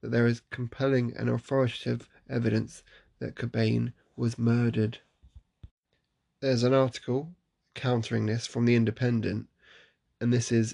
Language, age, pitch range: English, 10-29, 115-125 Hz